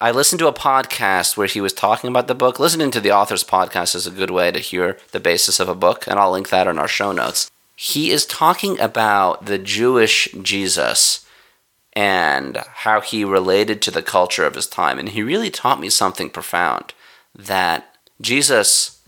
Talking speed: 195 wpm